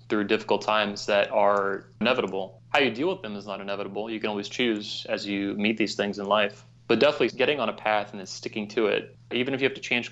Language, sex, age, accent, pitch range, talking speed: English, male, 20-39, American, 100-115 Hz, 250 wpm